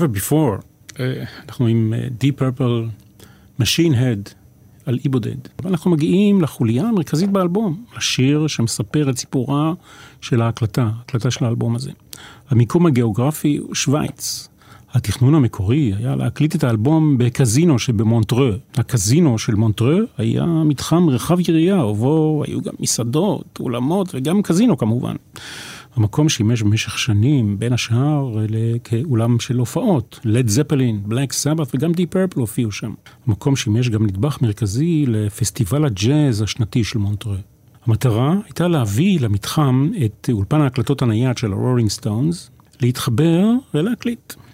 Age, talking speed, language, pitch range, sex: 40-59, 125 wpm, Hebrew, 115-150 Hz, male